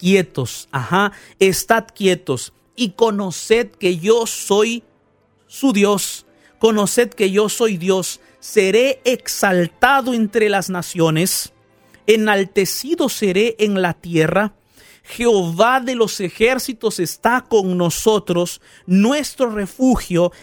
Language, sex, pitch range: Spanish, male, 165-210 Hz